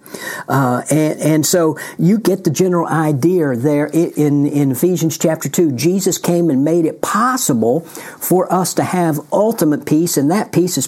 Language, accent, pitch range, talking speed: English, American, 150-185 Hz, 170 wpm